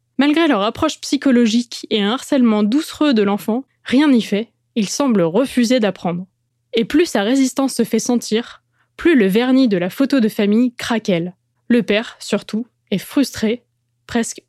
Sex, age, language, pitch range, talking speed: female, 20-39, French, 205-260 Hz, 160 wpm